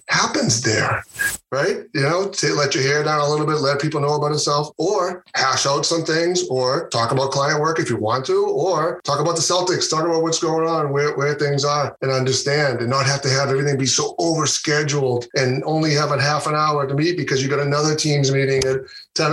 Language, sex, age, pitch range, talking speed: English, male, 30-49, 130-160 Hz, 235 wpm